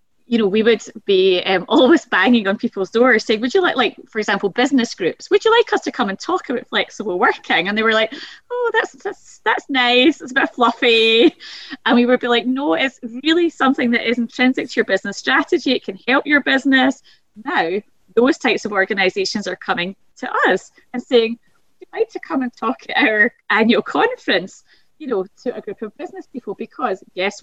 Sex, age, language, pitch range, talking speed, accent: female, 20-39, English, 195-265 Hz, 210 wpm, British